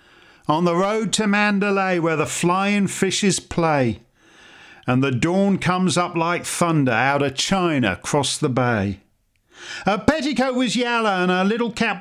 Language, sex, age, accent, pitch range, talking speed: English, male, 50-69, British, 165-230 Hz, 155 wpm